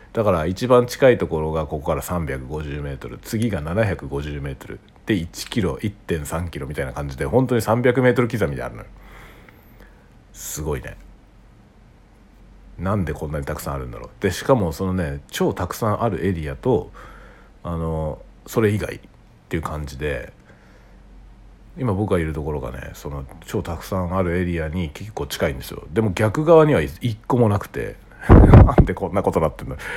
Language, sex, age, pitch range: Japanese, male, 60-79, 75-115 Hz